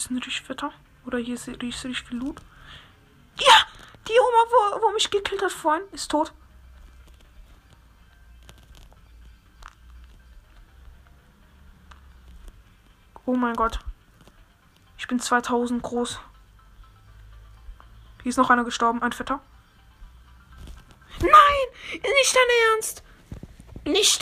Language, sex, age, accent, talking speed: German, female, 20-39, German, 95 wpm